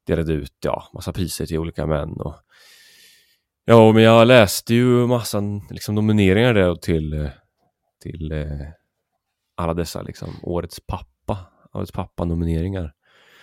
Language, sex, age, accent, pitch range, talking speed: Swedish, male, 30-49, native, 85-120 Hz, 130 wpm